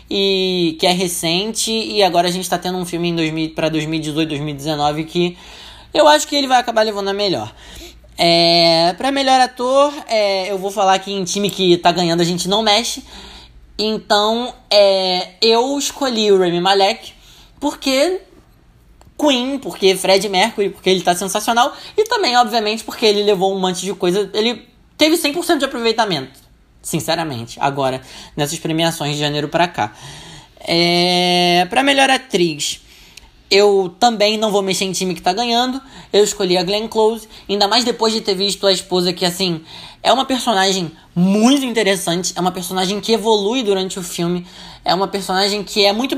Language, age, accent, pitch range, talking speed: Portuguese, 20-39, Brazilian, 175-225 Hz, 170 wpm